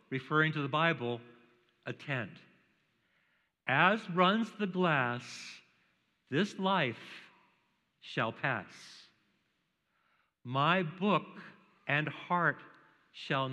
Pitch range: 155-210 Hz